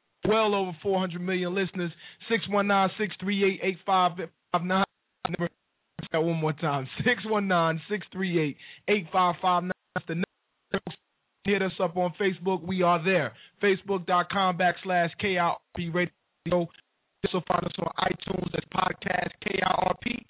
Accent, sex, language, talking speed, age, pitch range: American, male, English, 160 wpm, 20-39, 170-205 Hz